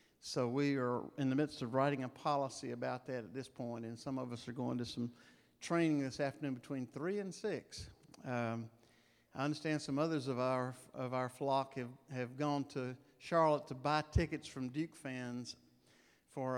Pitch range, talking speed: 130-170 Hz, 190 wpm